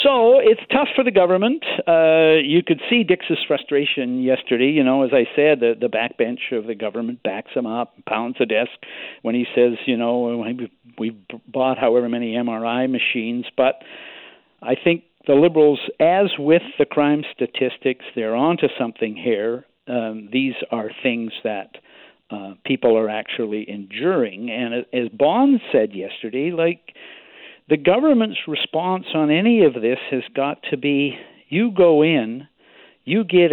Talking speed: 160 wpm